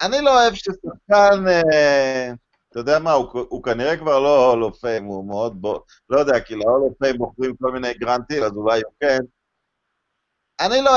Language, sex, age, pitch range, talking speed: Hebrew, male, 50-69, 135-190 Hz, 170 wpm